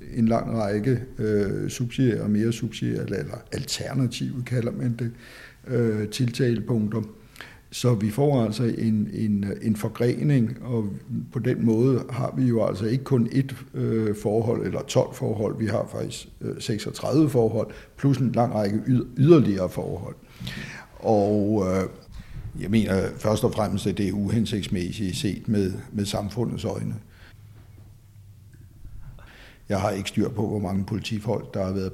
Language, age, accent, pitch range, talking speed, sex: Danish, 60-79, native, 105-120 Hz, 140 wpm, male